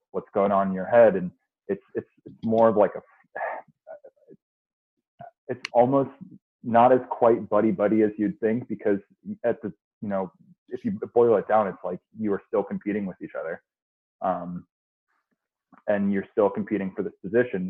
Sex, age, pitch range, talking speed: male, 30-49, 95-110 Hz, 175 wpm